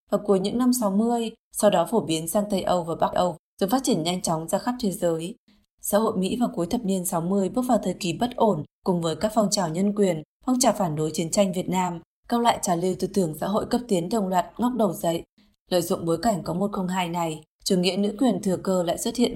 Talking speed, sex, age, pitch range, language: 265 wpm, female, 20-39, 180-215 Hz, Vietnamese